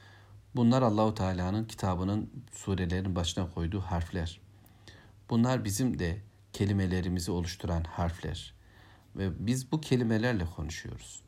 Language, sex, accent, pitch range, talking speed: Turkish, male, native, 90-115 Hz, 100 wpm